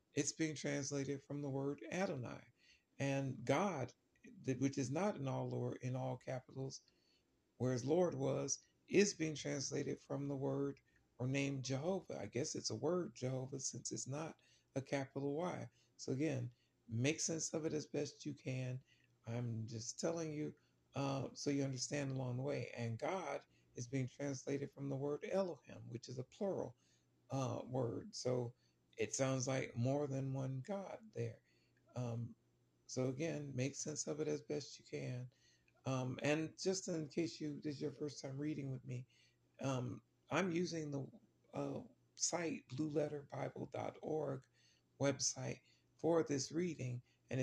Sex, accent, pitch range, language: male, American, 125-150 Hz, English